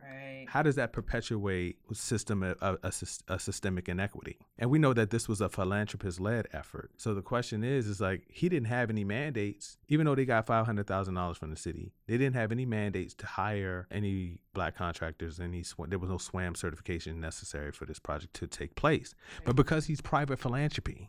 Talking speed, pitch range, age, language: 200 wpm, 90-110 Hz, 30-49, English